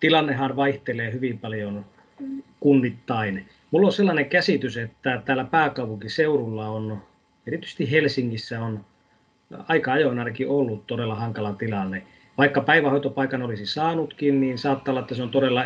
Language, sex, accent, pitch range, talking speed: Finnish, male, native, 120-150 Hz, 130 wpm